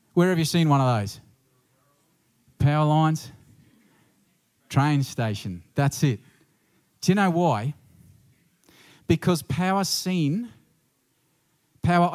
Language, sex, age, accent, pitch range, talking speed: English, male, 40-59, Australian, 130-165 Hz, 105 wpm